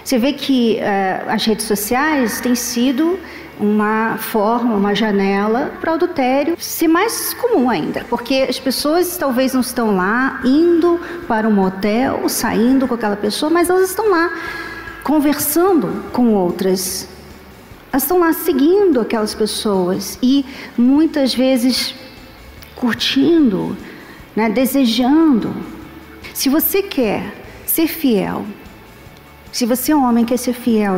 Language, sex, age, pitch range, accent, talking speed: Portuguese, female, 50-69, 230-320 Hz, Brazilian, 130 wpm